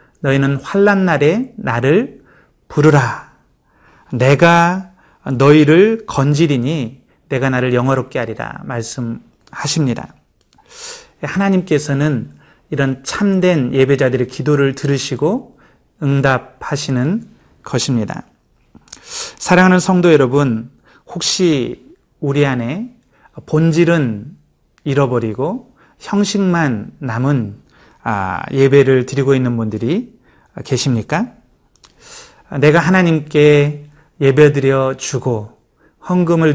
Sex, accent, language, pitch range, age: male, native, Korean, 130-175 Hz, 30-49